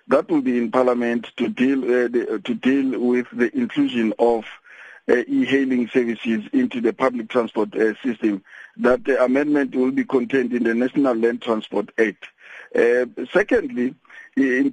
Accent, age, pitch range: South African, 50-69, 120-170 Hz